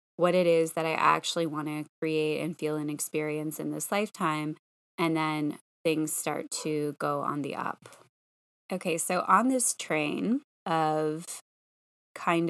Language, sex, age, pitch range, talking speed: English, female, 20-39, 155-175 Hz, 155 wpm